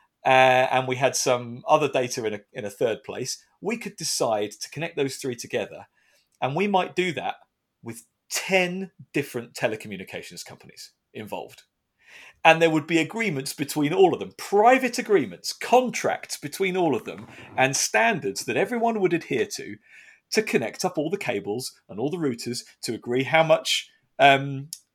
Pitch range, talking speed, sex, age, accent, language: 130-195 Hz, 165 wpm, male, 40-59, British, English